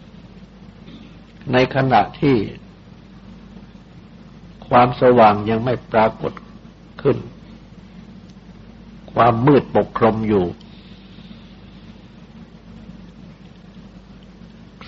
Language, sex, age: Thai, male, 60-79